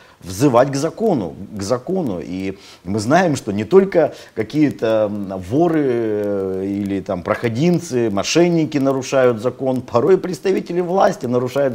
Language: Russian